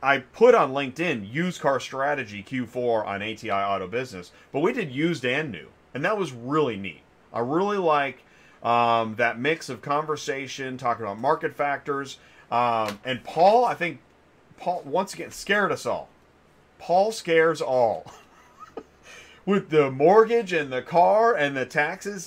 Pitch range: 115-160 Hz